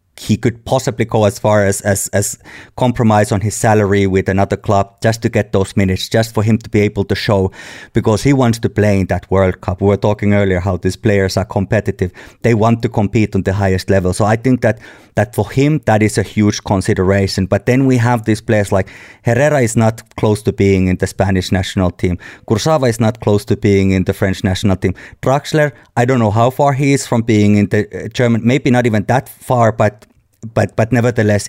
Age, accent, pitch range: 30-49, Finnish, 100-115 Hz